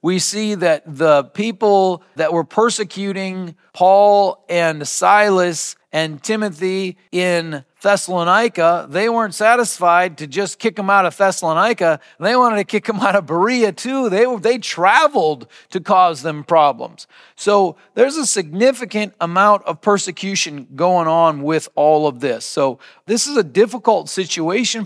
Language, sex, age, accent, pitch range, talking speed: English, male, 40-59, American, 160-215 Hz, 145 wpm